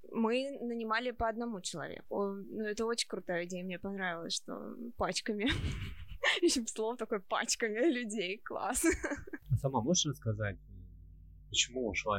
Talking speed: 130 wpm